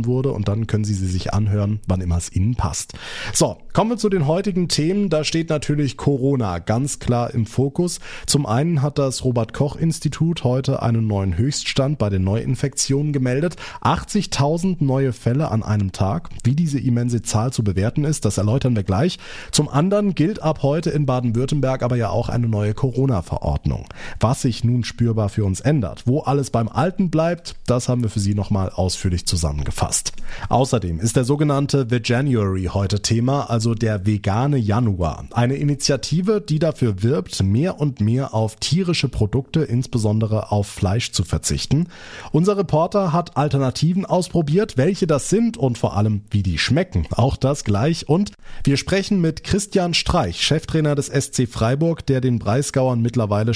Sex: male